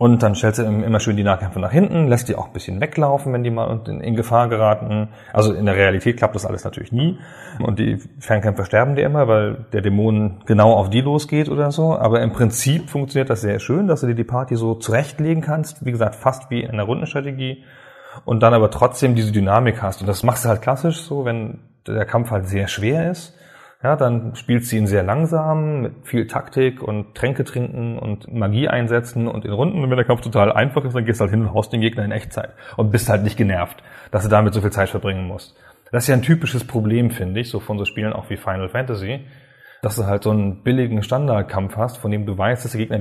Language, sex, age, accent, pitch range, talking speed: German, male, 30-49, German, 105-130 Hz, 235 wpm